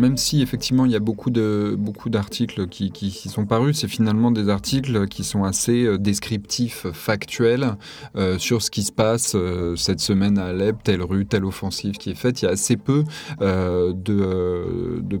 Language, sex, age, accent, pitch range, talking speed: French, male, 20-39, French, 95-115 Hz, 195 wpm